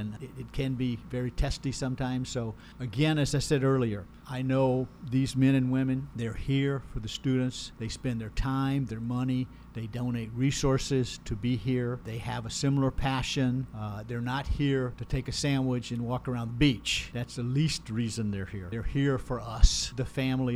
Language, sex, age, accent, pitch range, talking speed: English, male, 50-69, American, 120-140 Hz, 195 wpm